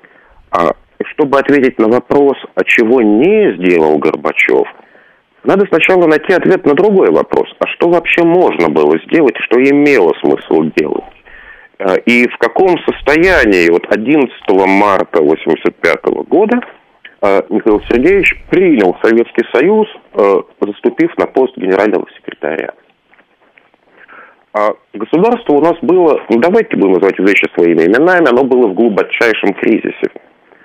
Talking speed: 120 wpm